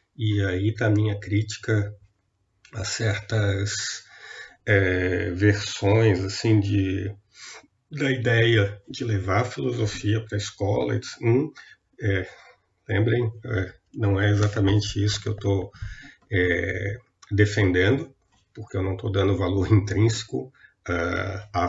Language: Portuguese